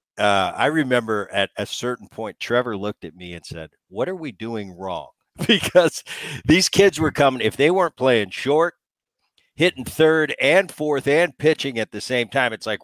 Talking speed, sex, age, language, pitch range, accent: 185 wpm, male, 50-69, English, 105-145 Hz, American